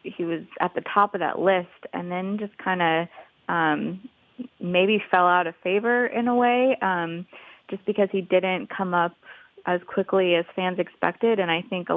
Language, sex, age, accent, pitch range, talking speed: English, female, 20-39, American, 170-195 Hz, 190 wpm